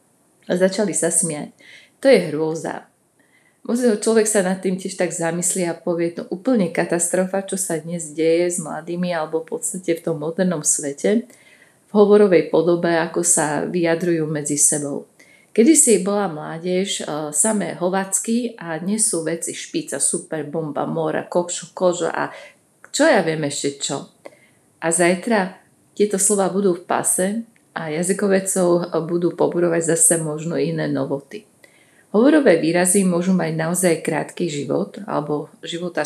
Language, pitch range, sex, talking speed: Slovak, 160-195 Hz, female, 140 wpm